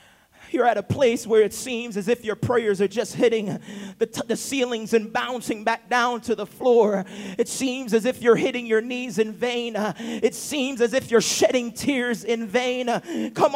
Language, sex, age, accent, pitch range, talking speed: English, male, 40-59, American, 215-285 Hz, 195 wpm